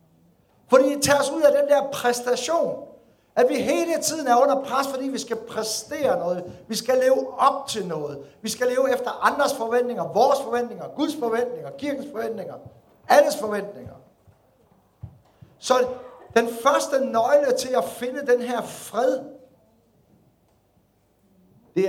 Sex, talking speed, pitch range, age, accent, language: male, 145 wpm, 180-270 Hz, 60-79, native, Danish